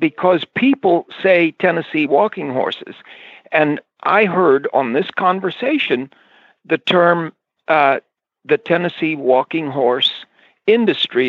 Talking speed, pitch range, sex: 105 wpm, 155-245 Hz, male